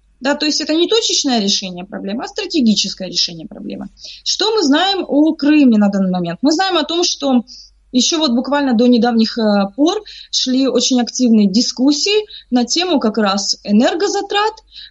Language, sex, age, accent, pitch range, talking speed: Russian, female, 20-39, native, 210-285 Hz, 160 wpm